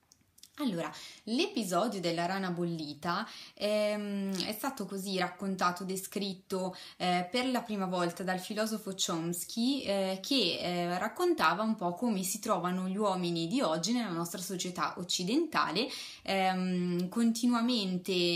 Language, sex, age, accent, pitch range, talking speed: Italian, female, 20-39, native, 175-210 Hz, 125 wpm